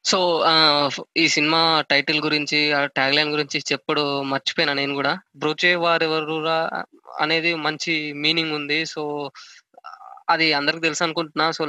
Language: Telugu